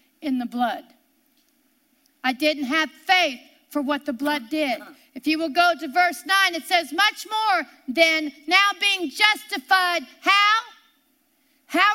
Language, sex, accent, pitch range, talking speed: English, female, American, 265-330 Hz, 145 wpm